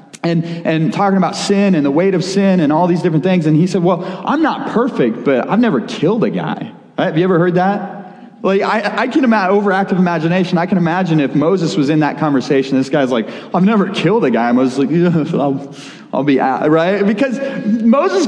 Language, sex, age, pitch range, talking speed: English, male, 30-49, 175-220 Hz, 230 wpm